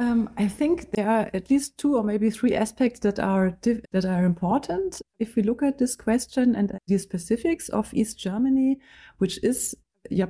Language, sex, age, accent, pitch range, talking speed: English, female, 30-49, German, 190-240 Hz, 190 wpm